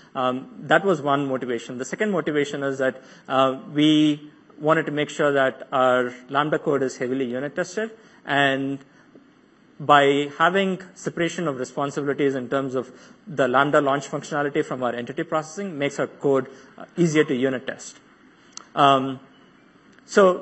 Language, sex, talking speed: English, male, 145 wpm